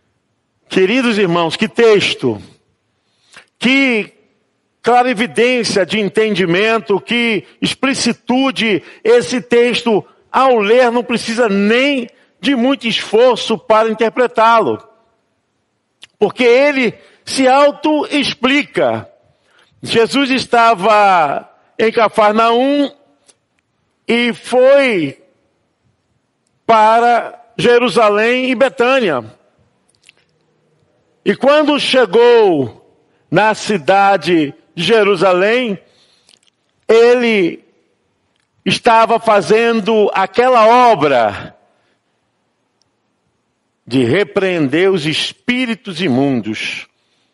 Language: Portuguese